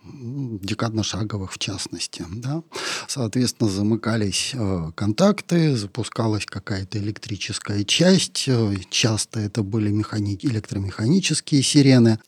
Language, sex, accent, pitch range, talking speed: Russian, male, native, 105-125 Hz, 85 wpm